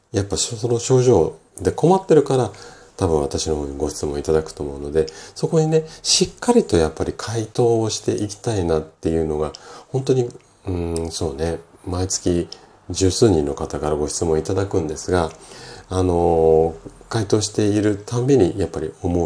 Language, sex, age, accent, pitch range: Japanese, male, 40-59, native, 75-100 Hz